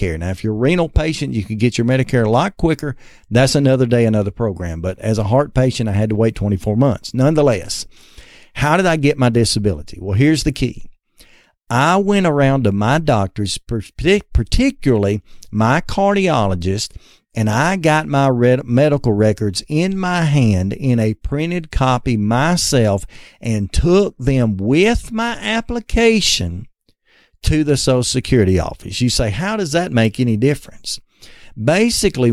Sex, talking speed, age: male, 155 wpm, 50-69